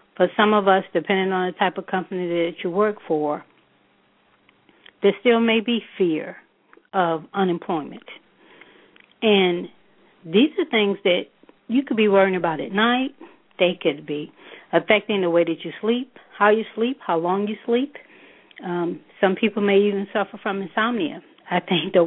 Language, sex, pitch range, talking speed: English, female, 170-215 Hz, 165 wpm